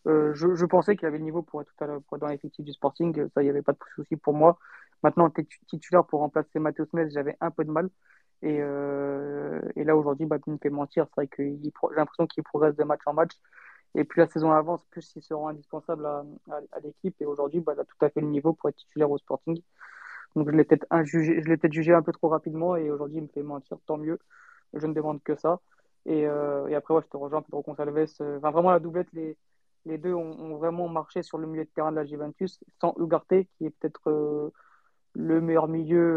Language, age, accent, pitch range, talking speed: French, 20-39, French, 150-165 Hz, 250 wpm